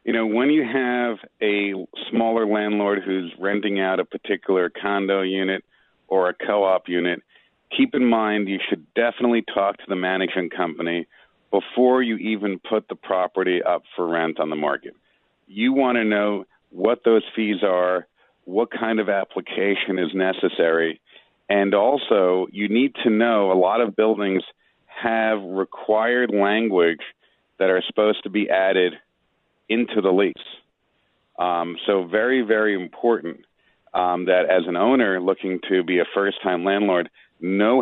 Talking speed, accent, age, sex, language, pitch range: 150 wpm, American, 40-59, male, English, 95-110 Hz